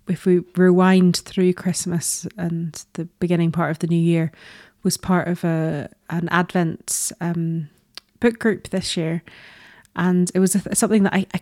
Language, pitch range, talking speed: English, 170-190 Hz, 170 wpm